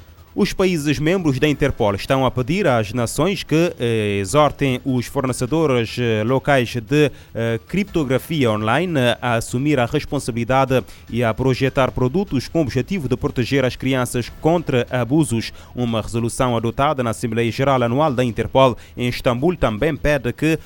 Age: 20-39